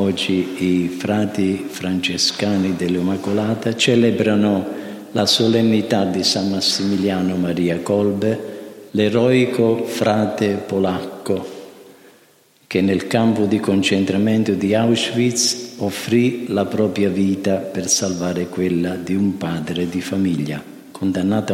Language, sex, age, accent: Italian, male, 50-69, native